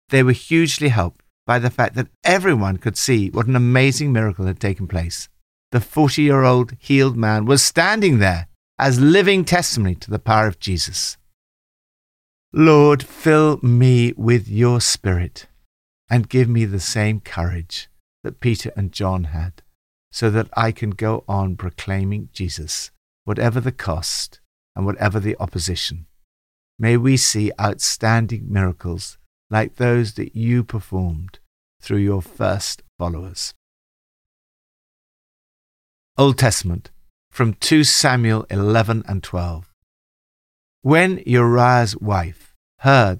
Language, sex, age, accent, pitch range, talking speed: English, male, 50-69, British, 90-125 Hz, 125 wpm